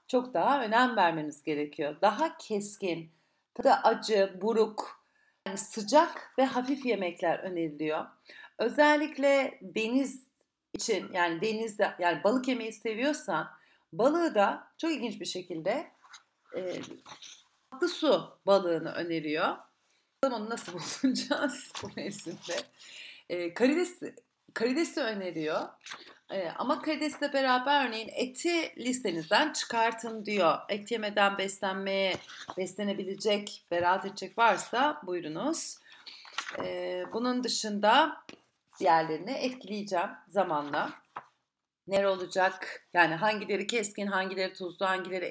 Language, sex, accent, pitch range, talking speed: Turkish, female, native, 190-265 Hz, 95 wpm